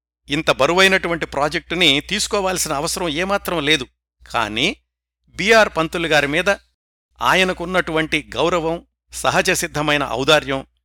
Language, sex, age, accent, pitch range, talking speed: Telugu, male, 60-79, native, 110-165 Hz, 95 wpm